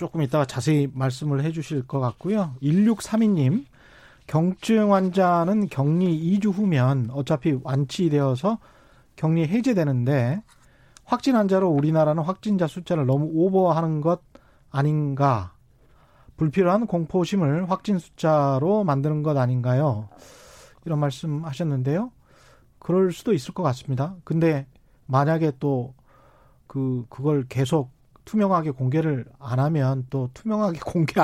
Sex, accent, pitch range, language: male, native, 135-185 Hz, Korean